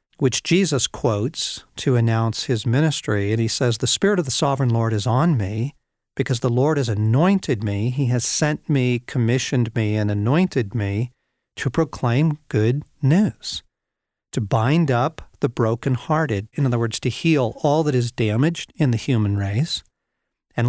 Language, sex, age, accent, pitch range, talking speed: English, male, 50-69, American, 110-145 Hz, 165 wpm